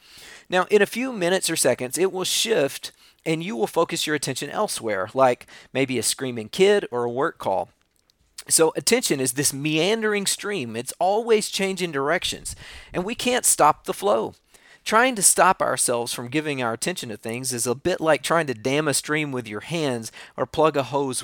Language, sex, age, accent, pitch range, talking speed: English, male, 40-59, American, 120-185 Hz, 190 wpm